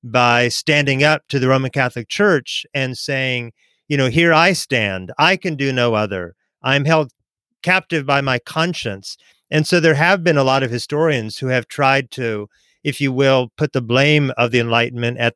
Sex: male